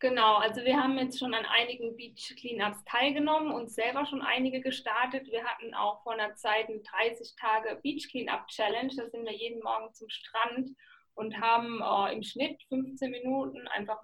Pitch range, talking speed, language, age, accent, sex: 215-250 Hz, 180 wpm, German, 20-39, German, female